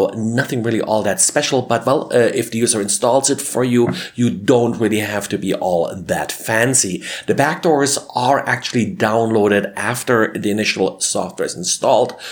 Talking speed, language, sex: 170 wpm, English, male